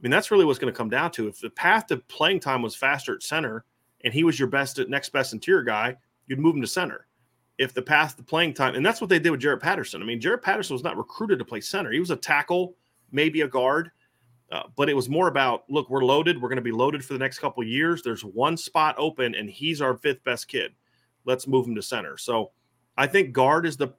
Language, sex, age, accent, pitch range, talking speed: English, male, 30-49, American, 125-155 Hz, 270 wpm